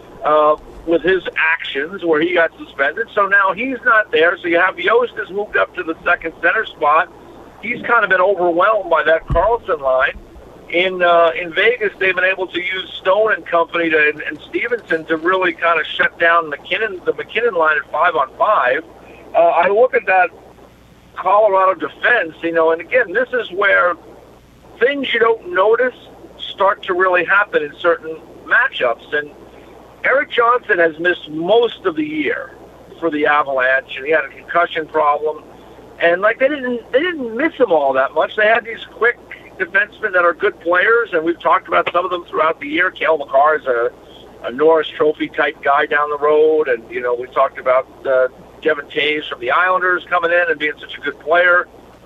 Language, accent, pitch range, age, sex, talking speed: English, American, 160-235 Hz, 50-69, male, 195 wpm